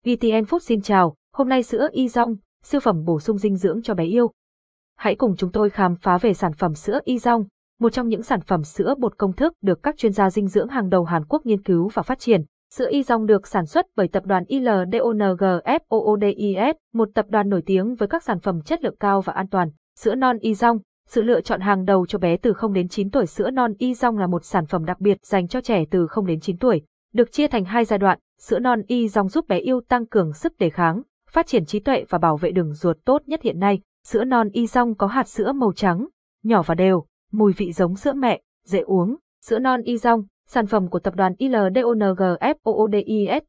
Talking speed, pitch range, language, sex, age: 230 wpm, 190-240 Hz, Vietnamese, female, 20-39